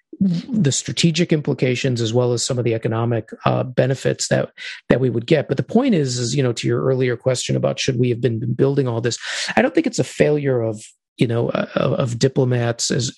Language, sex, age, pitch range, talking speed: English, male, 40-59, 115-140 Hz, 230 wpm